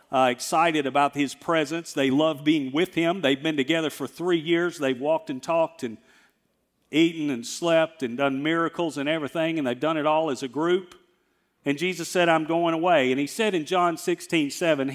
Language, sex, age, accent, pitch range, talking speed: English, male, 50-69, American, 160-220 Hz, 195 wpm